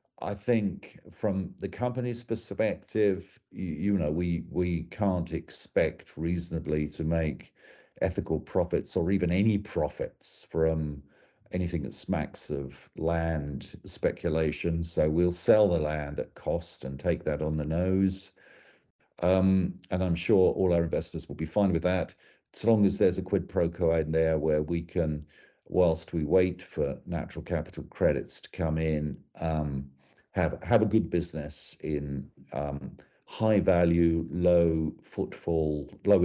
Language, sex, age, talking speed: English, male, 50-69, 145 wpm